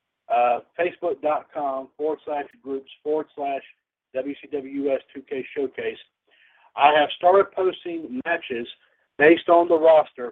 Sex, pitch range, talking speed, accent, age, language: male, 130-160 Hz, 105 wpm, American, 50-69, English